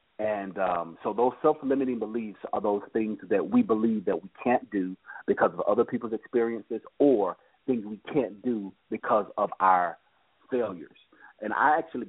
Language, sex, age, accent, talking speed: English, male, 40-59, American, 165 wpm